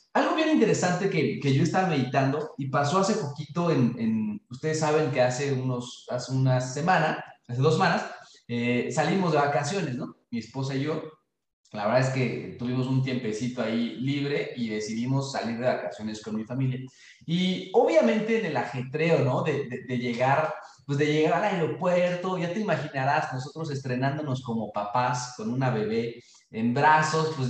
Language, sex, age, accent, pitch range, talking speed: Spanish, male, 30-49, Mexican, 130-185 Hz, 170 wpm